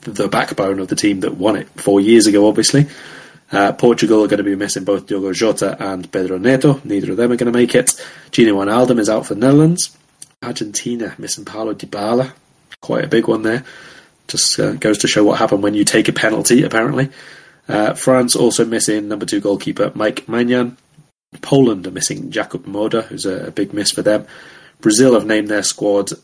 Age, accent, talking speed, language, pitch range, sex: 30-49, British, 200 wpm, English, 100-125 Hz, male